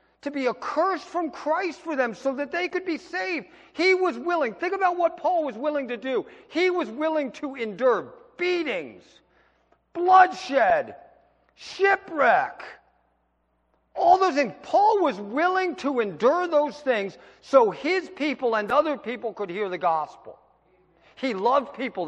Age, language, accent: 50-69, English, American